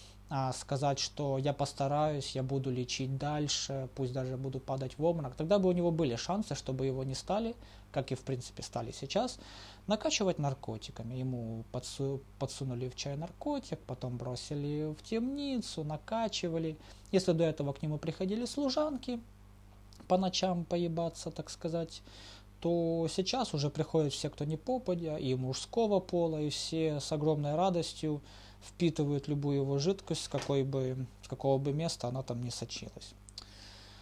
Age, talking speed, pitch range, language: 20-39, 145 wpm, 120-165 Hz, Russian